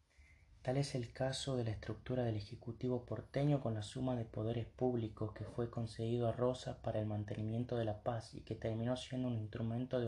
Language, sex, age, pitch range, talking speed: Spanish, male, 20-39, 105-125 Hz, 200 wpm